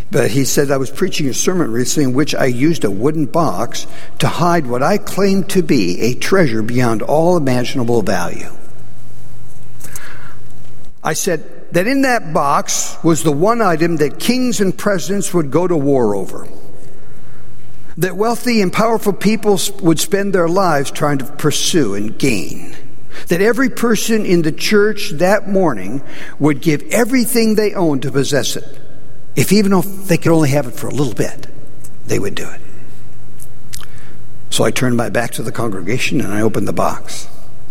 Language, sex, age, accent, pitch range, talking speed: English, male, 60-79, American, 135-195 Hz, 170 wpm